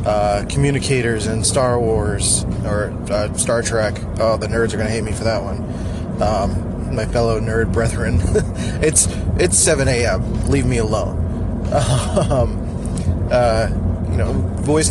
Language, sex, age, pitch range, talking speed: English, male, 20-39, 90-115 Hz, 150 wpm